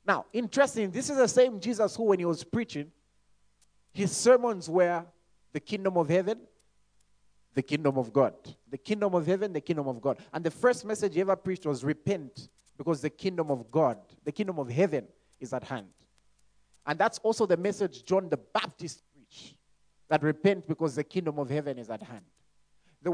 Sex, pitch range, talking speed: male, 140-195 Hz, 185 wpm